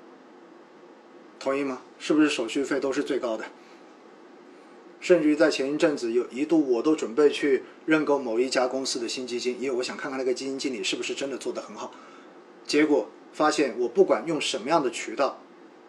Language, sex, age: Chinese, male, 20-39